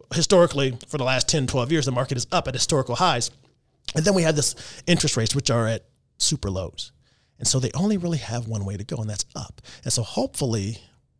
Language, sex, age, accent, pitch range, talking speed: English, male, 30-49, American, 110-145 Hz, 225 wpm